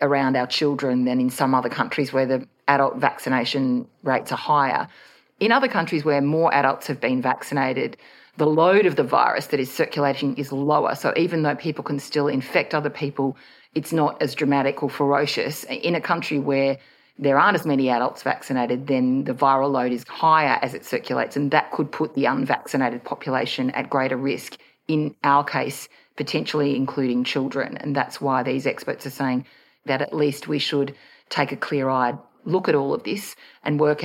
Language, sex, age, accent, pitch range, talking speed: English, female, 40-59, Australian, 130-150 Hz, 185 wpm